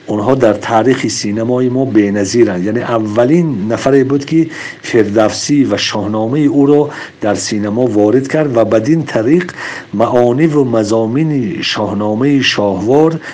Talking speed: 135 wpm